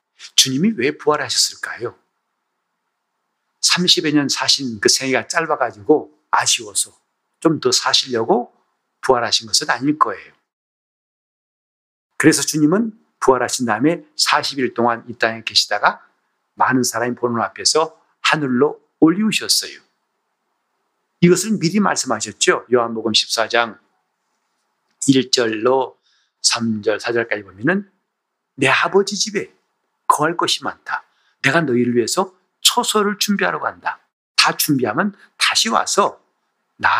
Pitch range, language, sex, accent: 120-195 Hz, Korean, male, native